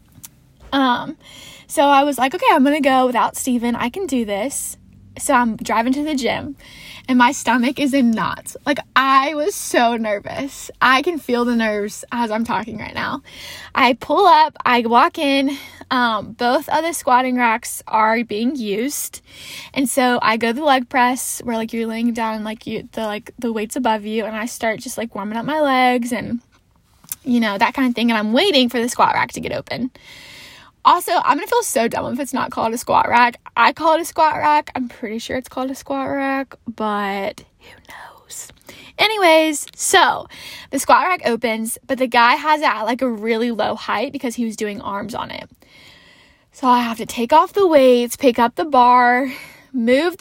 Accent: American